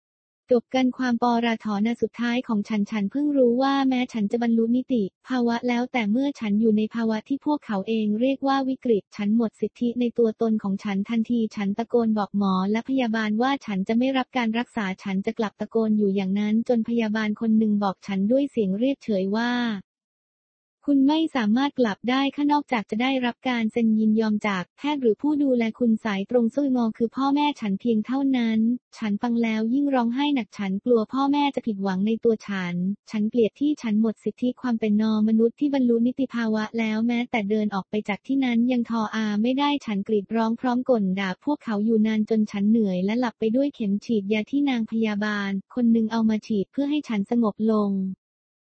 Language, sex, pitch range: English, female, 215-250 Hz